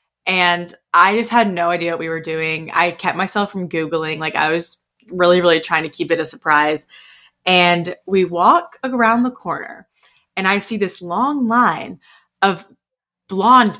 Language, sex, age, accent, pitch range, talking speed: English, female, 20-39, American, 165-210 Hz, 175 wpm